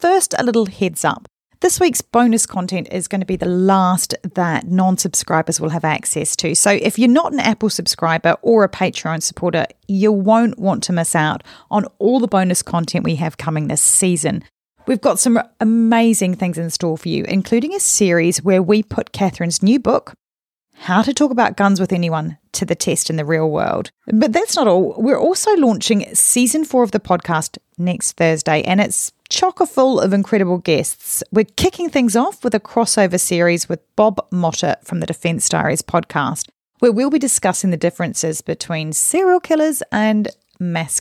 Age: 40-59